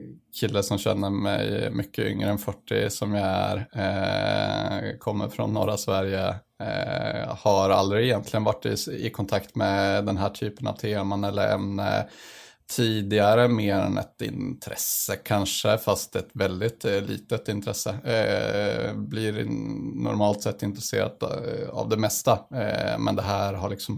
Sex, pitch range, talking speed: male, 100-115 Hz, 145 wpm